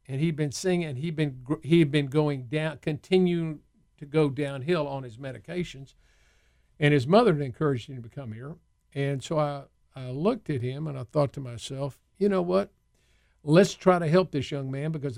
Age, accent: 50-69, American